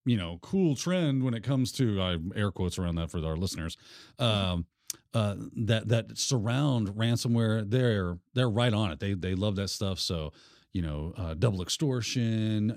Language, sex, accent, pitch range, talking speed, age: English, male, American, 95-130 Hz, 180 wpm, 40-59